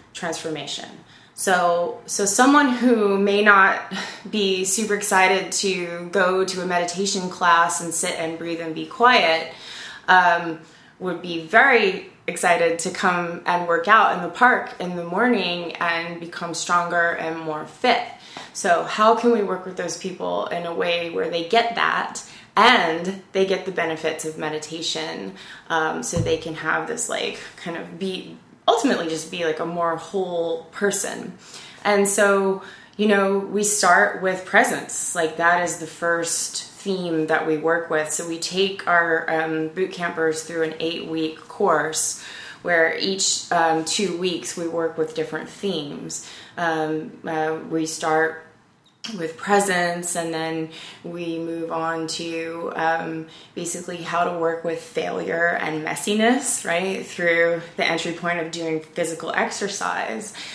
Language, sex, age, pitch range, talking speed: English, female, 20-39, 165-190 Hz, 155 wpm